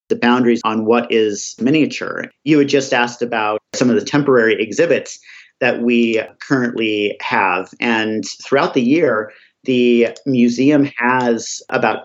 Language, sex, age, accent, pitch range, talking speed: English, male, 40-59, American, 115-135 Hz, 140 wpm